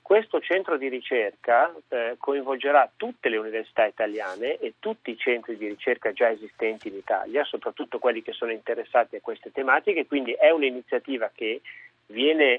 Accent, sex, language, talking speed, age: native, male, Italian, 155 wpm, 40-59